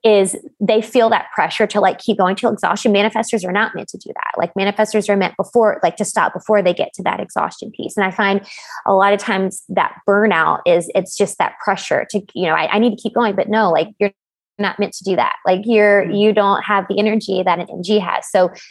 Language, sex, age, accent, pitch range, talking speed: English, female, 20-39, American, 190-220 Hz, 245 wpm